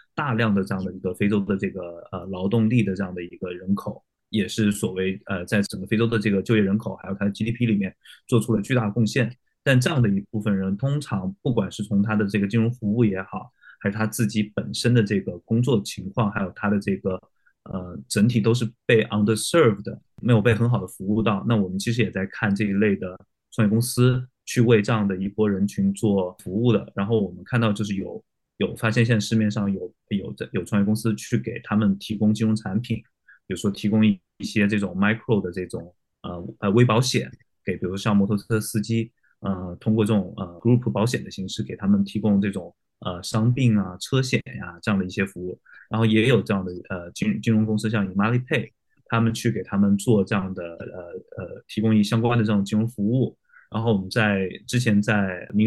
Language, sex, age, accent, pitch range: Chinese, male, 20-39, native, 100-115 Hz